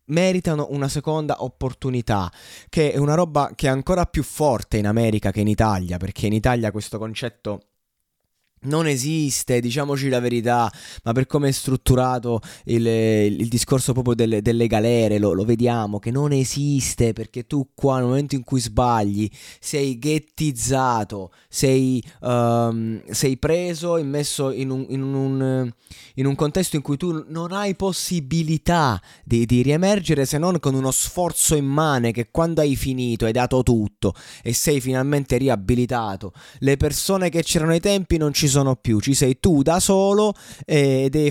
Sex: male